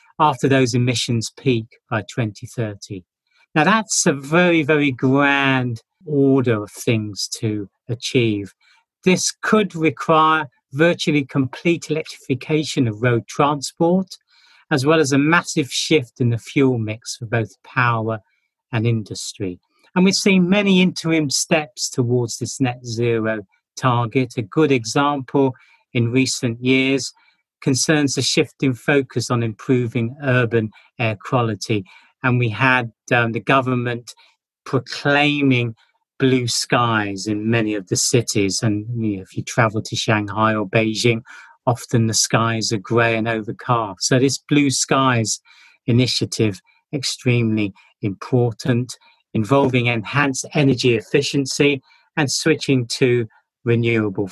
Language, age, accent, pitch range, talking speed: English, 40-59, British, 115-145 Hz, 125 wpm